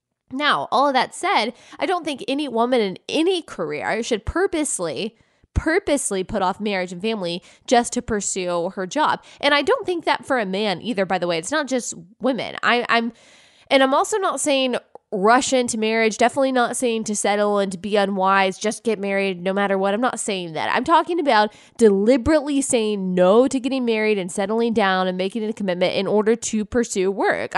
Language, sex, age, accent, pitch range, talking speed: English, female, 20-39, American, 200-280 Hz, 200 wpm